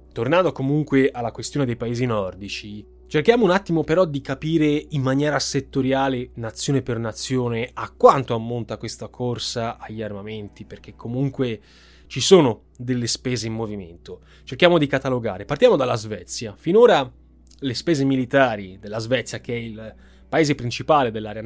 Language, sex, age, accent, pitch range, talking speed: Italian, male, 20-39, native, 115-155 Hz, 145 wpm